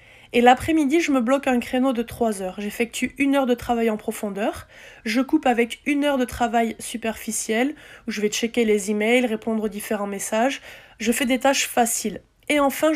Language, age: French, 20-39